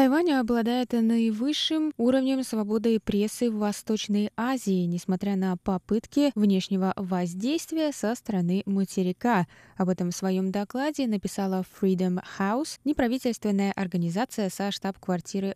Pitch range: 185-245 Hz